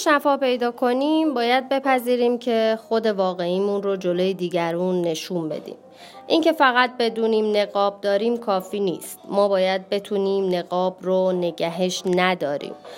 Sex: female